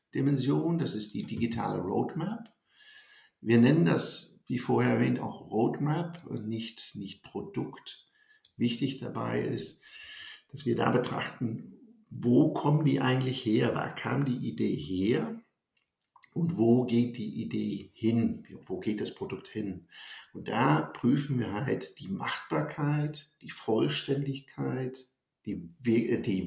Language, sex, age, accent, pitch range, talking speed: German, male, 50-69, German, 115-145 Hz, 130 wpm